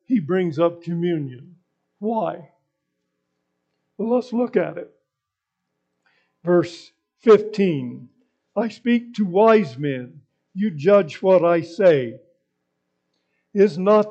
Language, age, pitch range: English, 60-79, 120-200 Hz